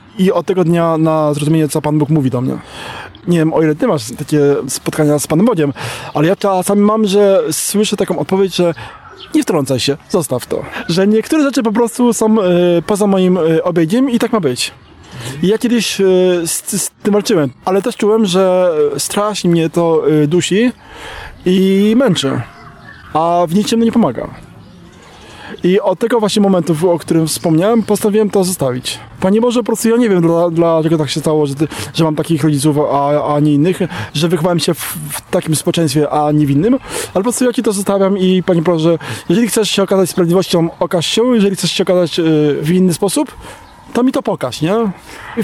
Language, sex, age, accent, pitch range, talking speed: Polish, male, 20-39, native, 155-210 Hz, 190 wpm